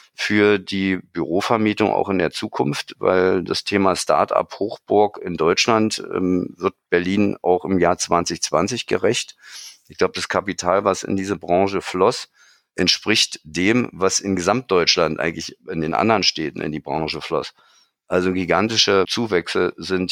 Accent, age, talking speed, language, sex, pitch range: German, 50-69, 145 wpm, German, male, 85-105 Hz